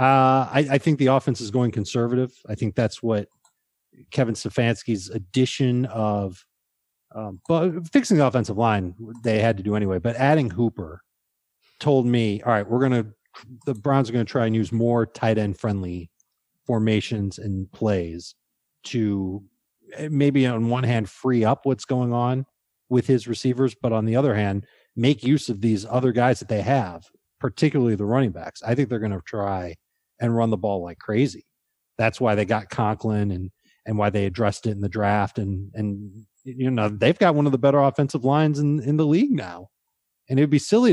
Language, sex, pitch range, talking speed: English, male, 110-155 Hz, 190 wpm